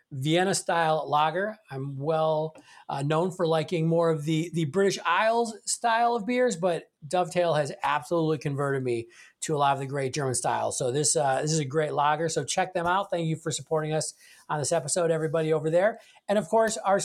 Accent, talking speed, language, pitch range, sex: American, 210 wpm, English, 155-200 Hz, male